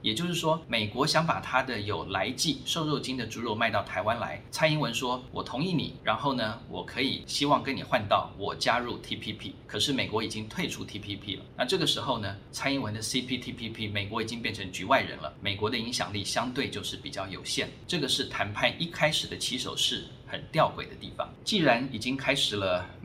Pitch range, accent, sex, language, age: 105-135 Hz, native, male, Chinese, 20-39